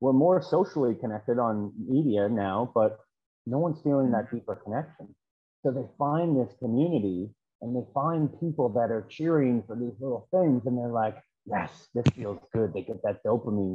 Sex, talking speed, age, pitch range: male, 180 wpm, 30-49, 110-150 Hz